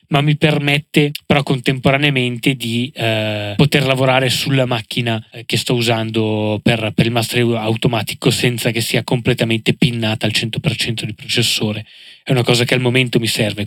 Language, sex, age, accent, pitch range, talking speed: Italian, male, 20-39, native, 115-145 Hz, 160 wpm